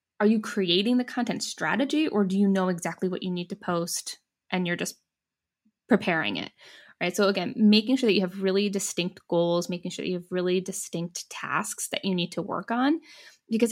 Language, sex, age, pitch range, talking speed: English, female, 10-29, 180-225 Hz, 205 wpm